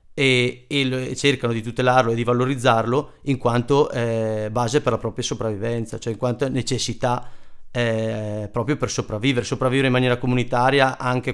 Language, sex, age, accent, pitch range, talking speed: Italian, male, 30-49, native, 115-130 Hz, 150 wpm